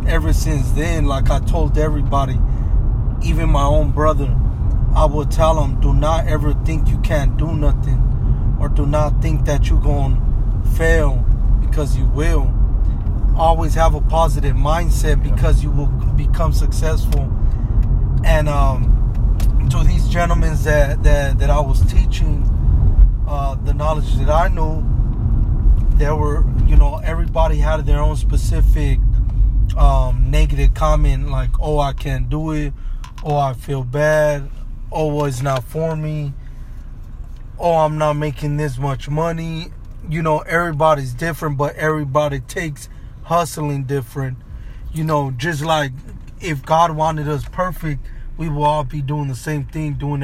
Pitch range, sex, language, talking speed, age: 125-155 Hz, male, English, 145 wpm, 20-39